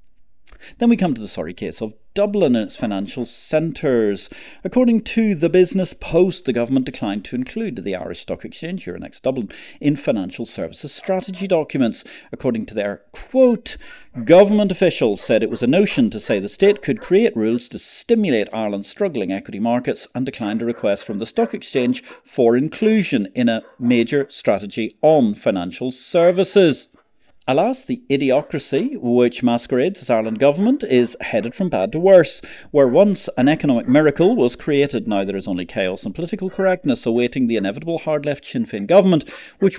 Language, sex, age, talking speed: English, male, 40-59, 170 wpm